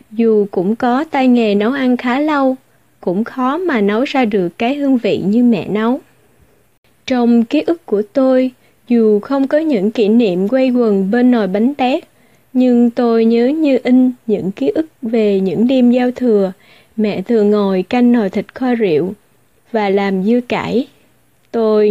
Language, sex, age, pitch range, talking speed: Vietnamese, female, 20-39, 205-255 Hz, 175 wpm